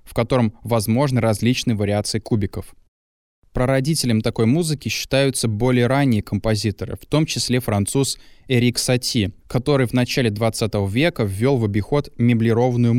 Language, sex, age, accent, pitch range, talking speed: Russian, male, 20-39, native, 105-135 Hz, 130 wpm